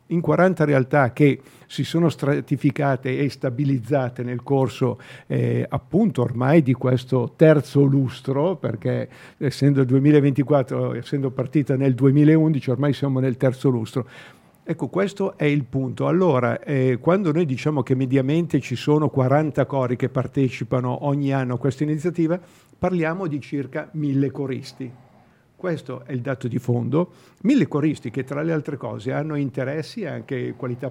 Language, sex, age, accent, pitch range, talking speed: Italian, male, 50-69, native, 130-150 Hz, 150 wpm